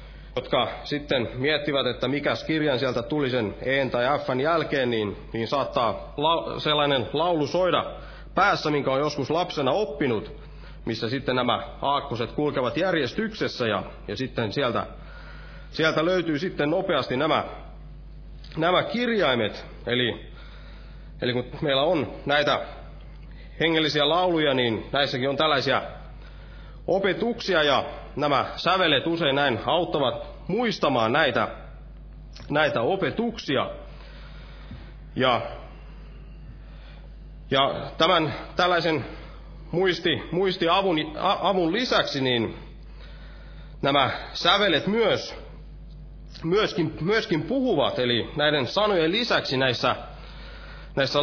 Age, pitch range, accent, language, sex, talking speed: 30-49, 135-165 Hz, native, Finnish, male, 100 wpm